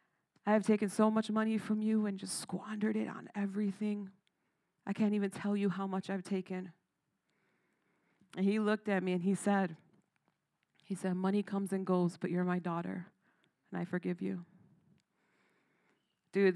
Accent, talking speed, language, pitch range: American, 165 wpm, English, 180-210 Hz